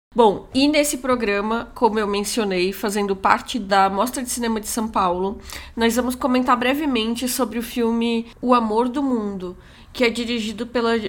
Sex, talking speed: female, 170 wpm